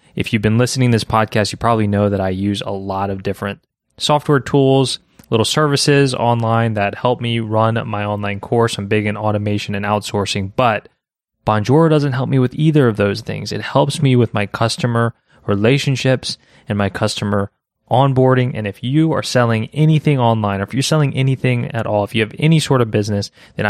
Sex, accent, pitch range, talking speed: male, American, 105-130 Hz, 195 wpm